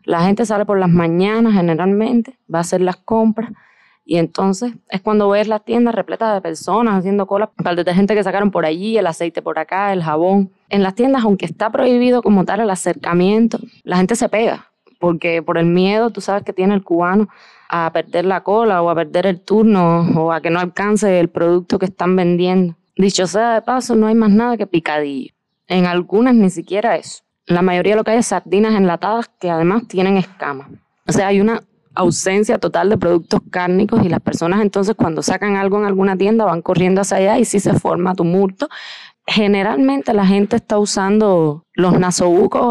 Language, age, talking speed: Spanish, 20-39, 200 wpm